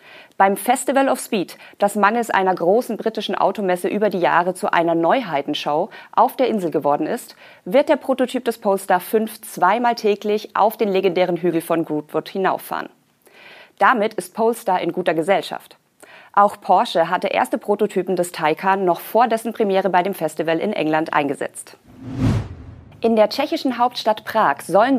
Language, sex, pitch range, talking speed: German, female, 170-225 Hz, 155 wpm